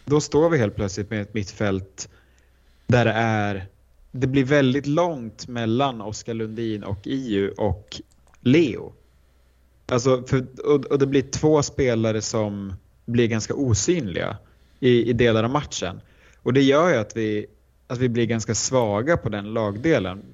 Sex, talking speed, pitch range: male, 155 wpm, 105-125 Hz